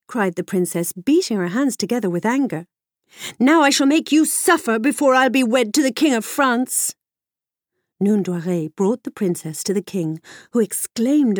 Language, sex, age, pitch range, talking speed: English, female, 50-69, 195-275 Hz, 175 wpm